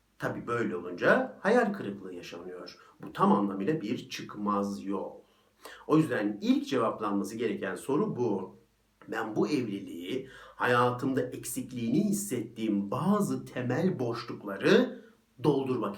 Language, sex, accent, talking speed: Turkish, male, native, 110 wpm